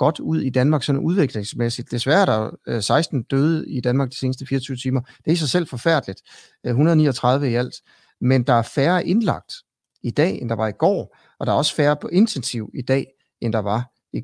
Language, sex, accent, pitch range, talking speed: Danish, male, native, 110-145 Hz, 215 wpm